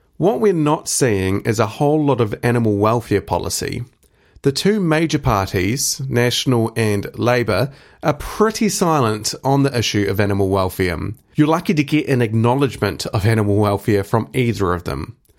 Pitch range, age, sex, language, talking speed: 110-140 Hz, 30-49, male, English, 160 wpm